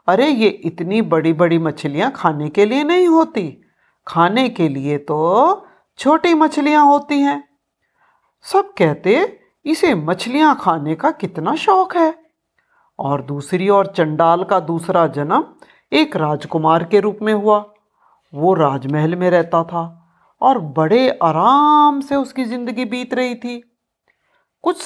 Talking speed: 135 wpm